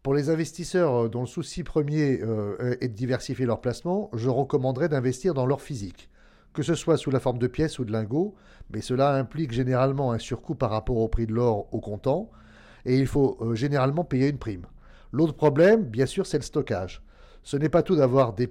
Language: English